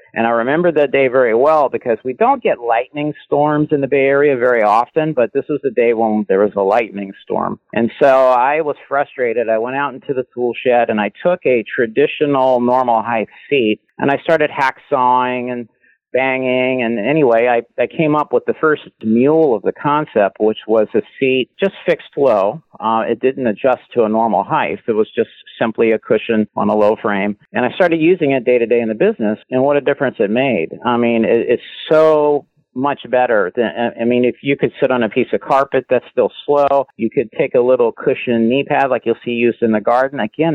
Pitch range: 115-145 Hz